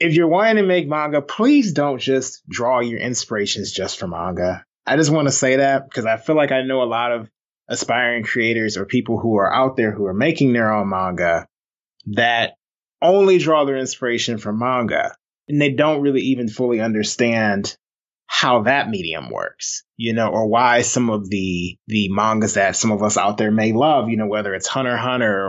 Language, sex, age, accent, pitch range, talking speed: English, male, 30-49, American, 110-135 Hz, 200 wpm